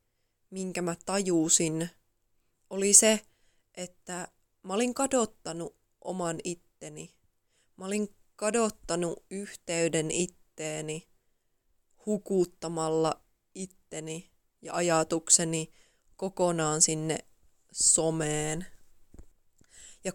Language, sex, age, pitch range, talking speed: Finnish, female, 20-39, 165-195 Hz, 70 wpm